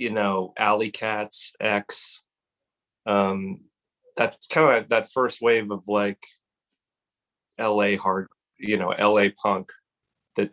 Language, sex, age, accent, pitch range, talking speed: English, male, 30-49, American, 100-110 Hz, 125 wpm